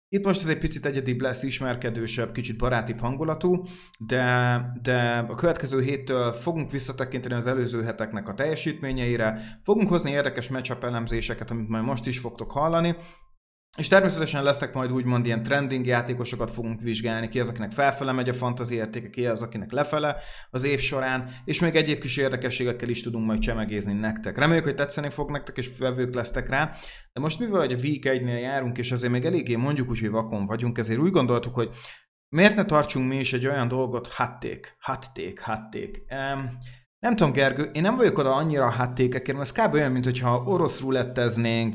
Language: Hungarian